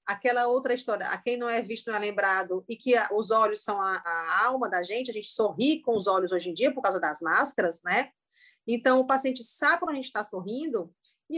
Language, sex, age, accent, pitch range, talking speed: Portuguese, female, 30-49, Brazilian, 205-270 Hz, 235 wpm